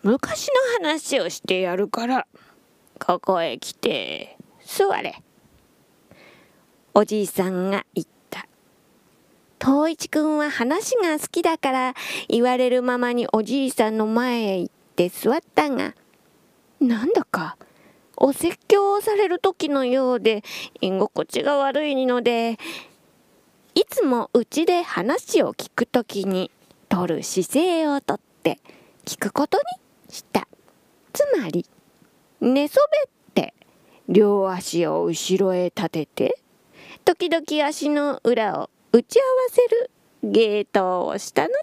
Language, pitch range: Japanese, 210-330 Hz